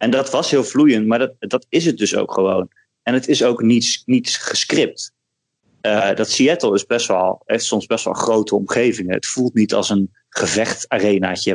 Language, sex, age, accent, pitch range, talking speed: Dutch, male, 30-49, Dutch, 95-115 Hz, 195 wpm